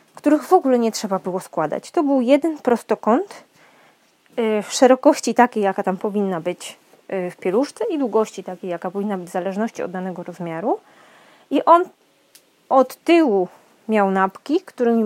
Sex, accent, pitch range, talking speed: female, Polish, 200-270 Hz, 150 wpm